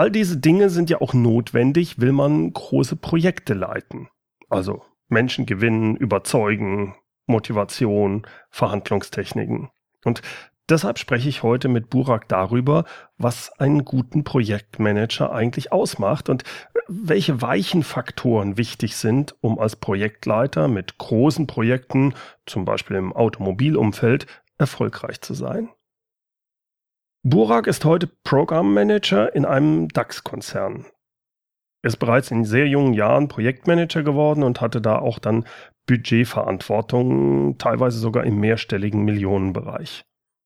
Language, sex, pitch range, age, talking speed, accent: German, male, 110-145 Hz, 40-59, 115 wpm, German